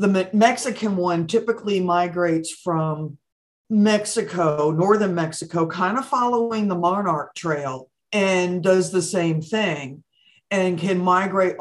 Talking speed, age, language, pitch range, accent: 120 wpm, 50-69, English, 165-200 Hz, American